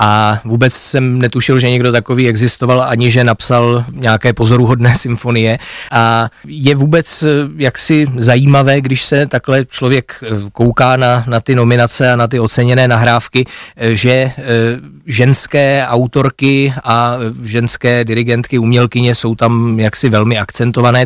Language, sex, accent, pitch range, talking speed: Czech, male, native, 115-130 Hz, 130 wpm